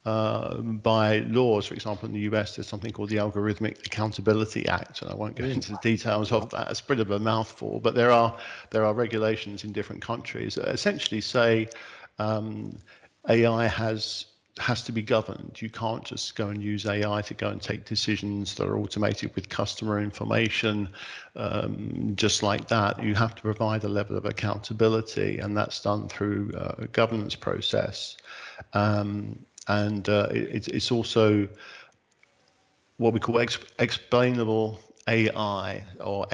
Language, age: English, 50-69